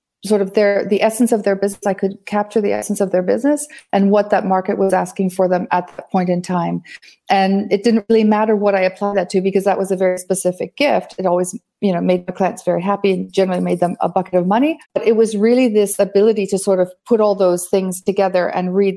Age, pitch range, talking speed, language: 40-59, 180-200 Hz, 250 wpm, English